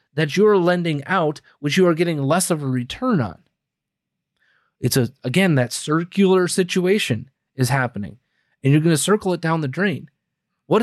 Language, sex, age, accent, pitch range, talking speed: English, male, 30-49, American, 125-170 Hz, 170 wpm